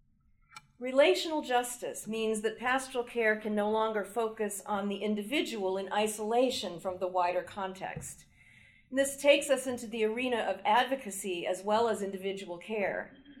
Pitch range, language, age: 205-265 Hz, English, 40-59